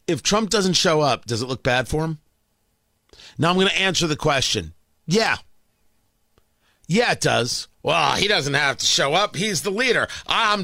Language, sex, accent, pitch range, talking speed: English, male, American, 155-240 Hz, 185 wpm